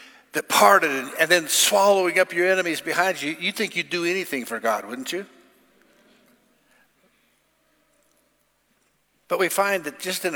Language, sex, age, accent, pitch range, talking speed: English, male, 60-79, American, 155-205 Hz, 150 wpm